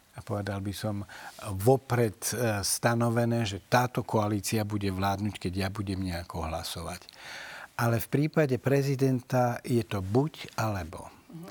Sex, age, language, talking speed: male, 60-79, Slovak, 125 wpm